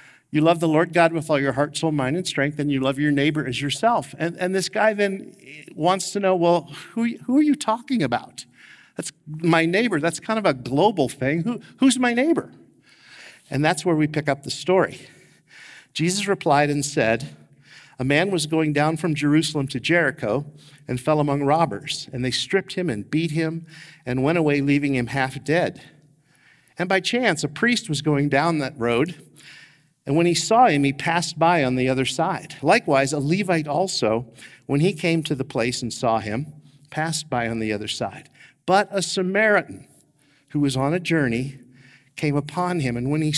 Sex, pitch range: male, 135-170 Hz